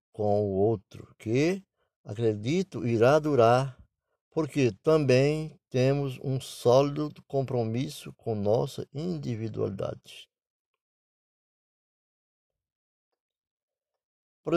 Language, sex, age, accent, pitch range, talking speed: Portuguese, male, 60-79, Brazilian, 120-160 Hz, 70 wpm